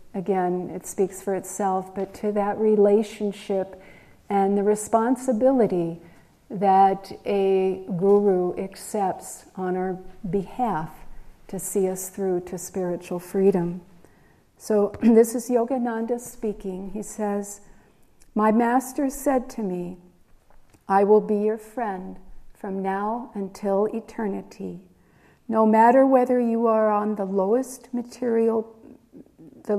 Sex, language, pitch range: female, English, 190-230 Hz